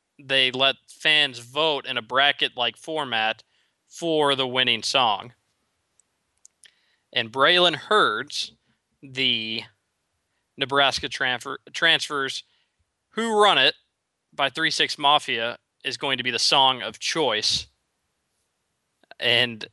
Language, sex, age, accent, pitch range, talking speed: English, male, 20-39, American, 115-150 Hz, 105 wpm